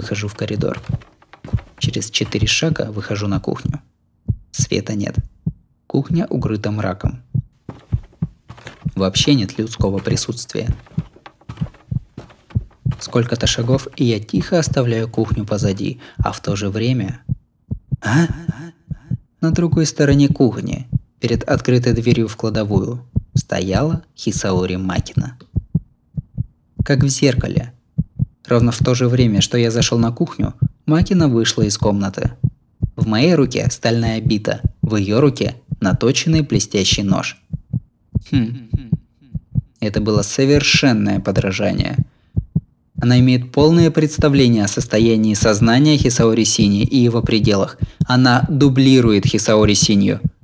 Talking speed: 110 wpm